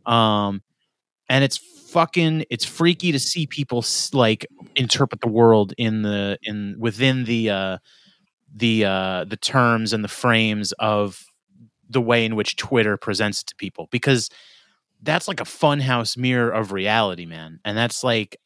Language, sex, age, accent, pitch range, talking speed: English, male, 30-49, American, 110-155 Hz, 160 wpm